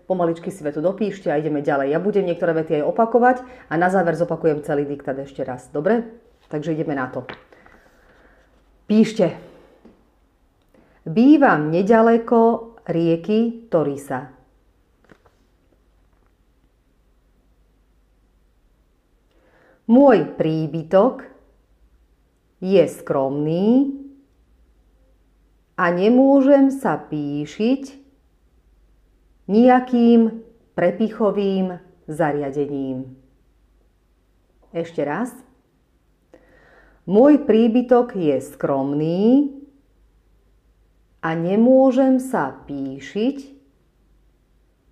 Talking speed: 70 wpm